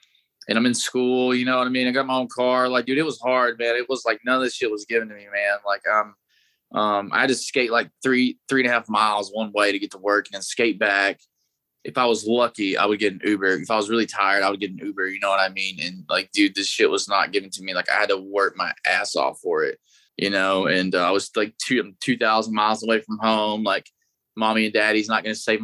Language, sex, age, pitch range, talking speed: English, male, 20-39, 100-120 Hz, 285 wpm